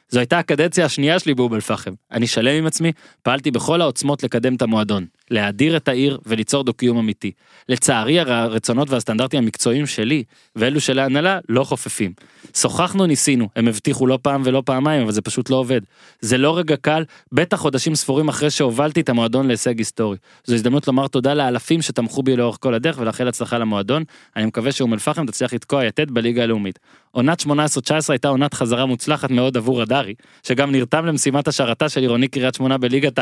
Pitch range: 125-180 Hz